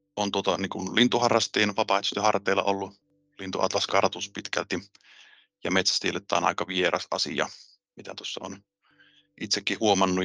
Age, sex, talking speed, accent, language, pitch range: 30-49, male, 115 wpm, native, Finnish, 90-105 Hz